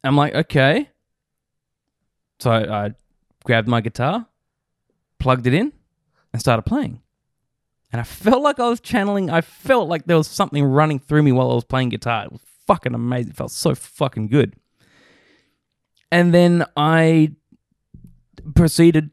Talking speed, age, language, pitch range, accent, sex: 155 wpm, 20-39, English, 120-155 Hz, Australian, male